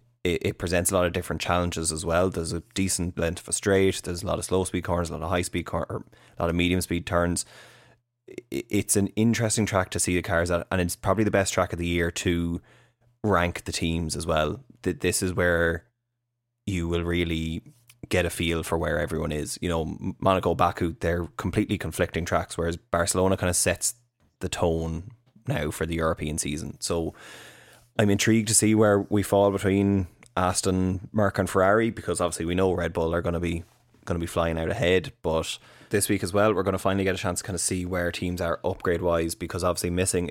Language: English